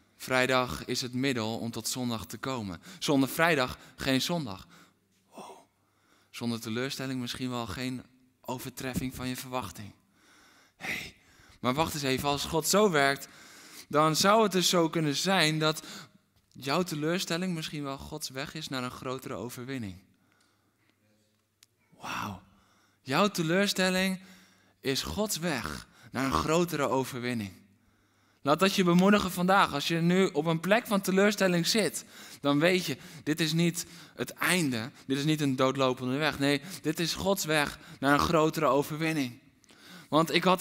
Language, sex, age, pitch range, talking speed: Dutch, male, 20-39, 125-185 Hz, 145 wpm